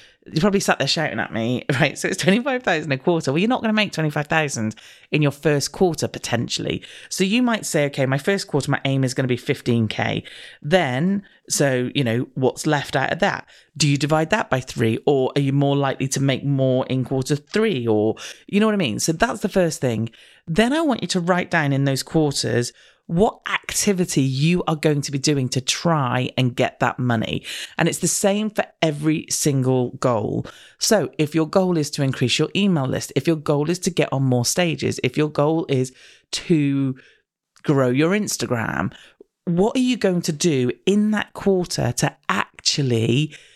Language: English